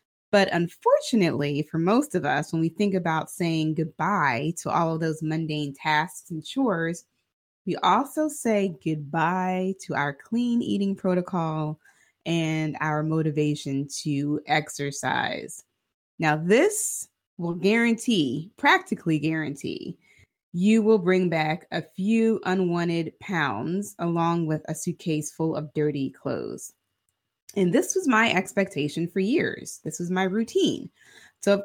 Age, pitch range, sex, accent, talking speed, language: 20-39, 155-210 Hz, female, American, 130 wpm, English